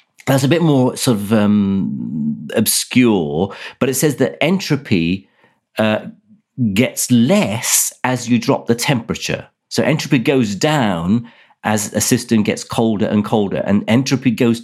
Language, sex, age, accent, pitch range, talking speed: English, male, 40-59, British, 105-140 Hz, 145 wpm